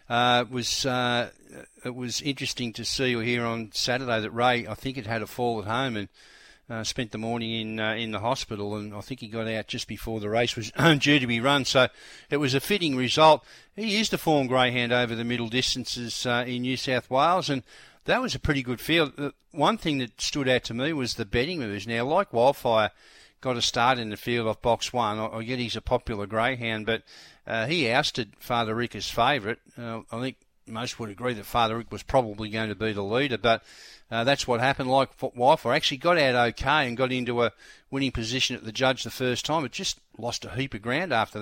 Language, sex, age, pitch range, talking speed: English, male, 50-69, 115-130 Hz, 230 wpm